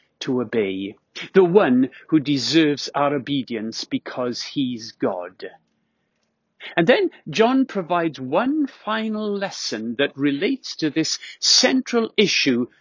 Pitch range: 160-255 Hz